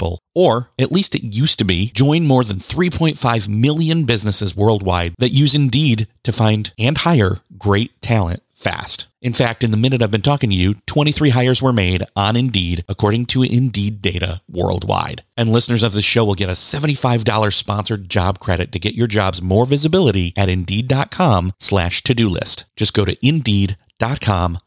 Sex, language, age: male, English, 30-49